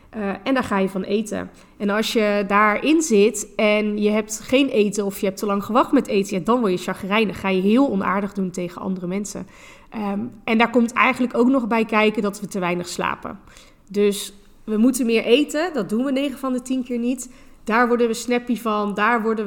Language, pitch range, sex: Dutch, 205-240 Hz, female